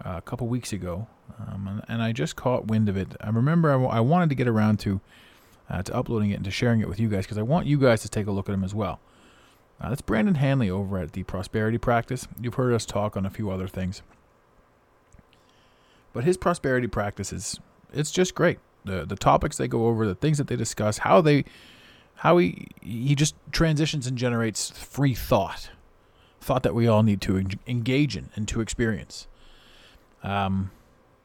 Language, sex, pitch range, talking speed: English, male, 105-135 Hz, 205 wpm